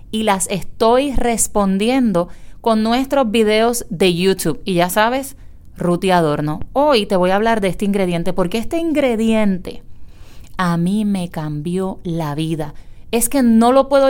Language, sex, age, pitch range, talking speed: Spanish, female, 30-49, 175-235 Hz, 155 wpm